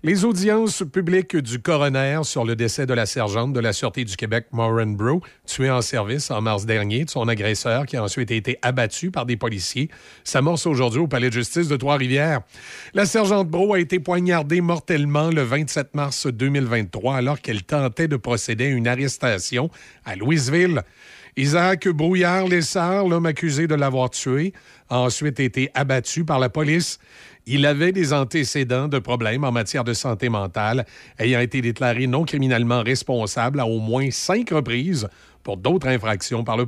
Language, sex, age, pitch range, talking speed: French, male, 40-59, 115-150 Hz, 170 wpm